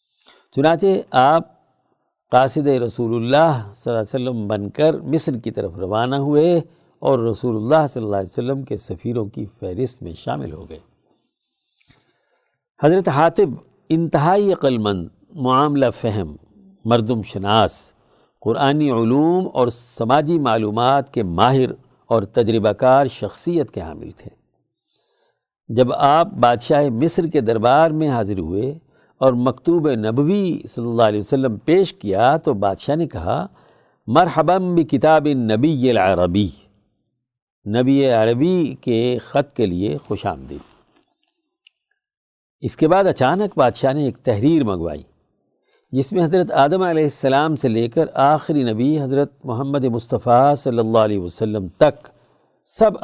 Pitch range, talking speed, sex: 110-155 Hz, 130 wpm, male